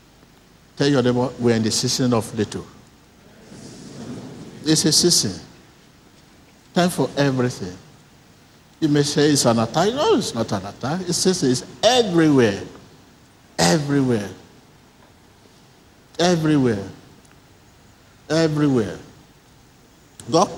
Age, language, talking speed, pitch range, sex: 60-79, English, 95 wpm, 115-155 Hz, male